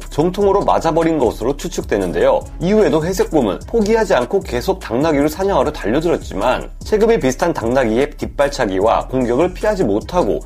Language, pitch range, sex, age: Korean, 150-205 Hz, male, 30-49